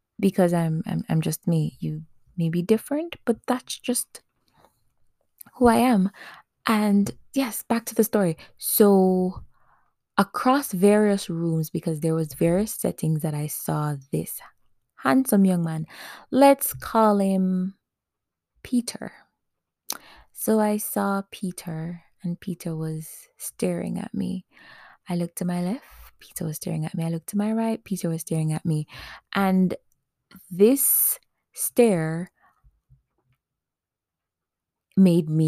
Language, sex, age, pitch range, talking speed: English, female, 20-39, 160-205 Hz, 130 wpm